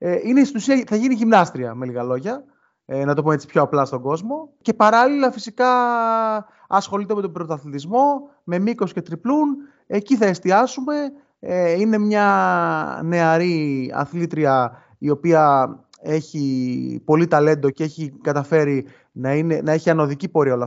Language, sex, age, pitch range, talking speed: Greek, male, 20-39, 140-205 Hz, 150 wpm